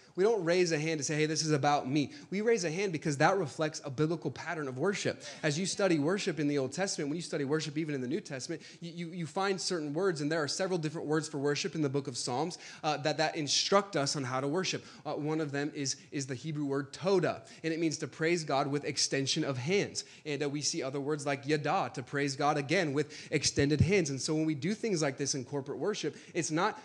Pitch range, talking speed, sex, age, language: 140-175 Hz, 260 wpm, male, 20-39, English